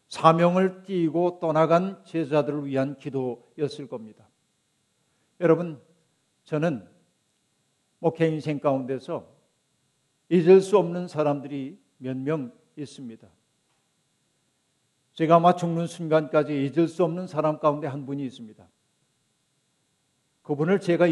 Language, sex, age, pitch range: Korean, male, 50-69, 140-175 Hz